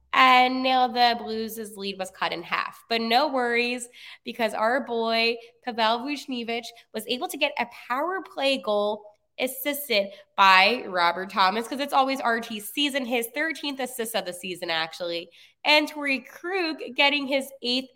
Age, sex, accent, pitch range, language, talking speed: 20-39, female, American, 195-265 Hz, English, 155 wpm